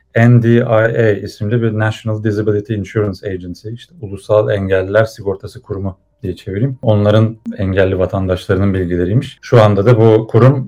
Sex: male